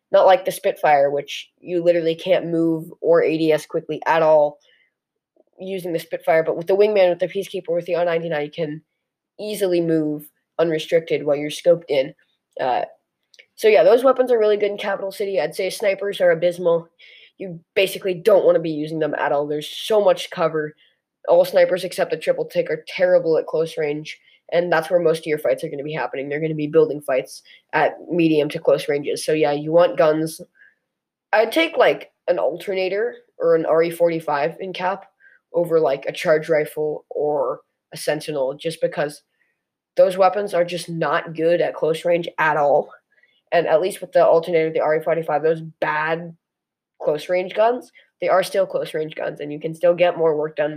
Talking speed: 195 wpm